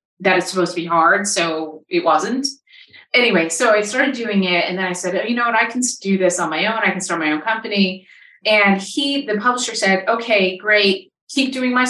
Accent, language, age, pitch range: American, English, 30-49, 175-230 Hz